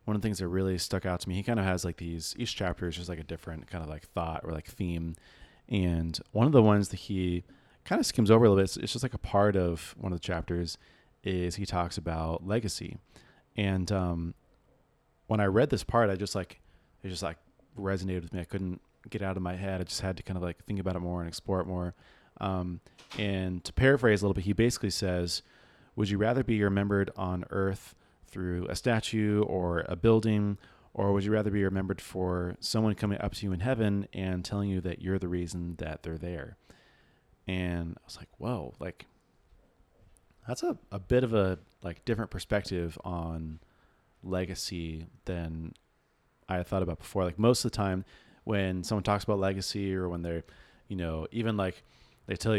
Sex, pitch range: male, 85-100 Hz